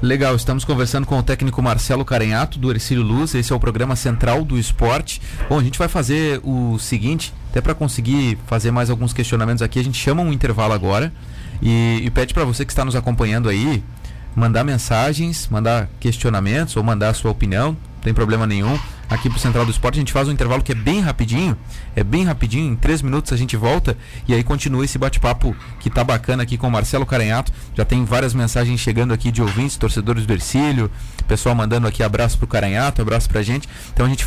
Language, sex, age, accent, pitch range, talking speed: Portuguese, male, 30-49, Brazilian, 110-130 Hz, 215 wpm